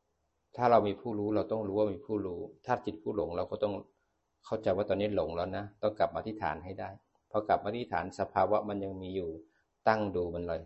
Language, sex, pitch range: Thai, male, 90-110 Hz